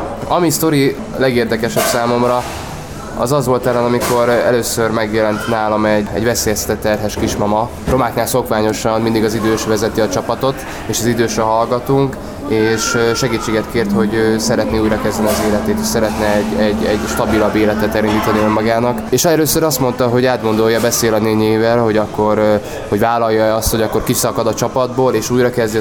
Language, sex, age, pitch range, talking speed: Hungarian, male, 20-39, 110-120 Hz, 155 wpm